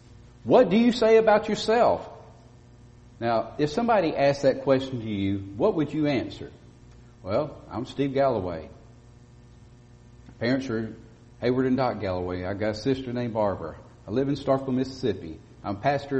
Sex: male